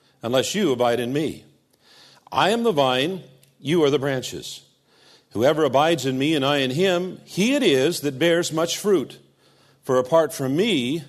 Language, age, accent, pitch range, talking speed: English, 50-69, American, 120-160 Hz, 175 wpm